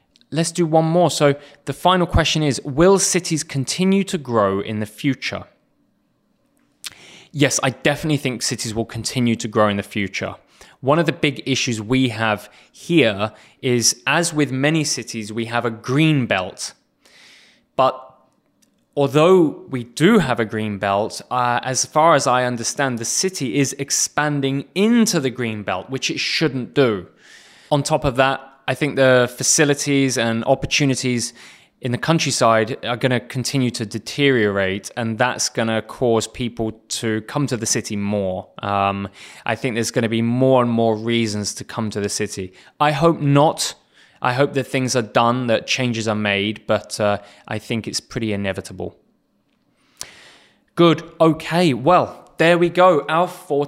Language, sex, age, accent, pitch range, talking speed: English, male, 20-39, British, 115-145 Hz, 165 wpm